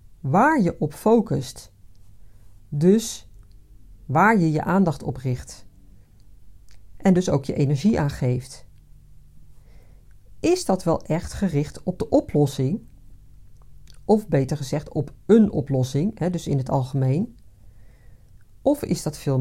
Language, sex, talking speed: Dutch, female, 125 wpm